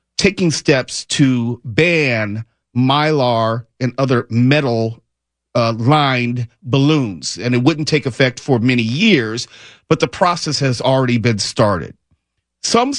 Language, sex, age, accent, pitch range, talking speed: English, male, 50-69, American, 120-155 Hz, 120 wpm